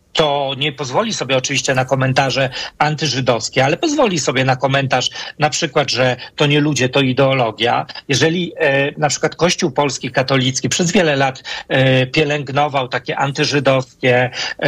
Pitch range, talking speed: 135-170 Hz, 135 wpm